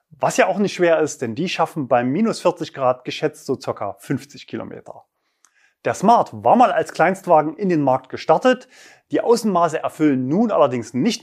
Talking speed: 180 wpm